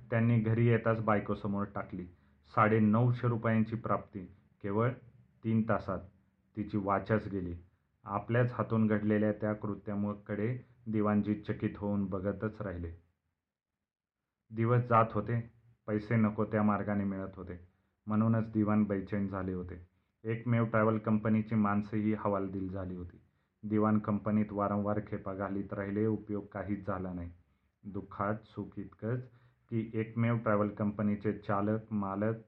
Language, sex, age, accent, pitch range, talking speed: Marathi, male, 40-59, native, 100-110 Hz, 115 wpm